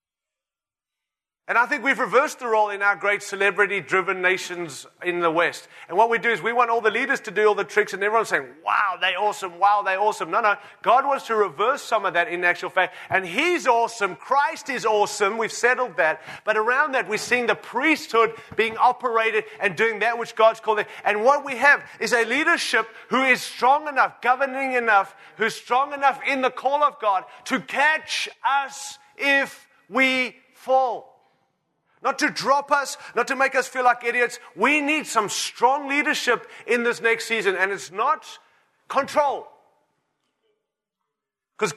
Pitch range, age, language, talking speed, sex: 210-270 Hz, 30-49, English, 185 wpm, male